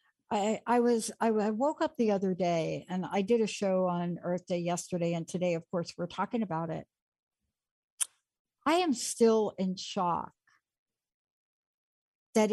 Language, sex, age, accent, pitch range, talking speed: English, female, 60-79, American, 170-215 Hz, 160 wpm